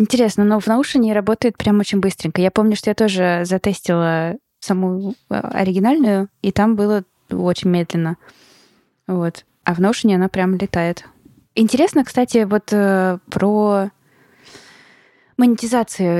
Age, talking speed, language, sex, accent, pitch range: 20-39, 125 wpm, Russian, female, native, 170-205 Hz